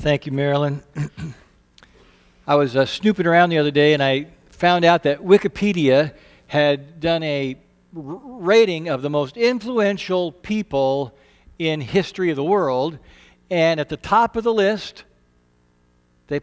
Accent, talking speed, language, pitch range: American, 140 wpm, English, 145-200 Hz